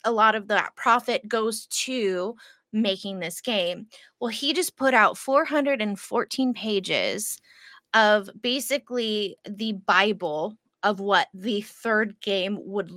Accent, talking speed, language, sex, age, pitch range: American, 125 wpm, English, female, 20-39, 195-245 Hz